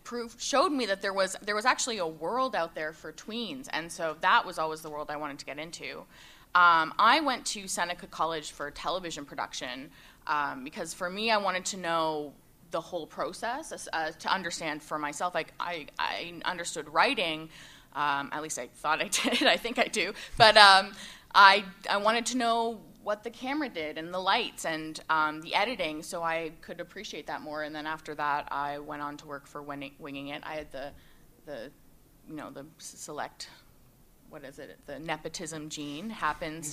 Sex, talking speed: female, 195 wpm